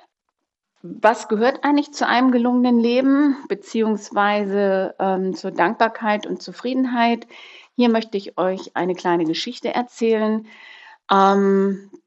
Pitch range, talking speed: 185-230 Hz, 110 wpm